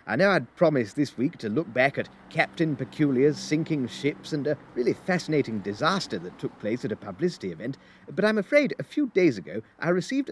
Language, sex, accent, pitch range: English, male, British, 140-210 Hz